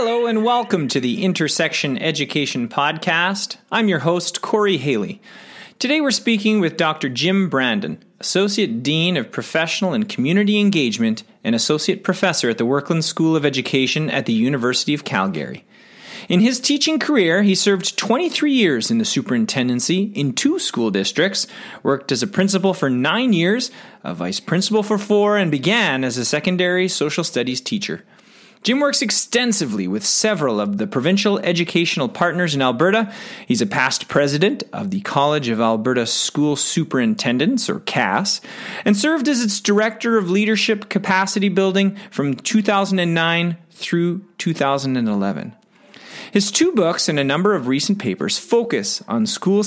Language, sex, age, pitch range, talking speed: English, male, 30-49, 155-220 Hz, 150 wpm